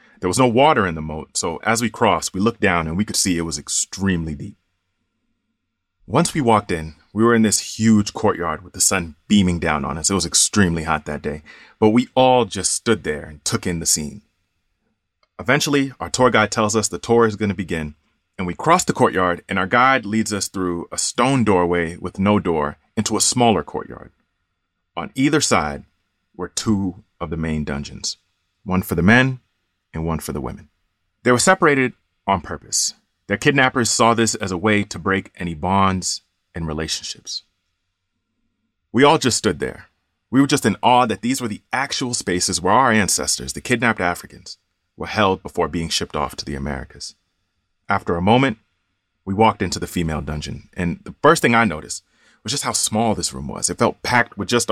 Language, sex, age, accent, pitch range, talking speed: English, male, 30-49, American, 85-110 Hz, 200 wpm